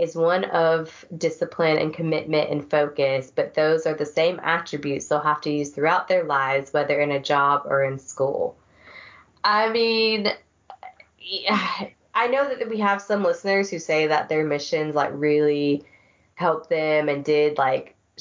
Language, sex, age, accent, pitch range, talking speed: English, female, 20-39, American, 145-170 Hz, 160 wpm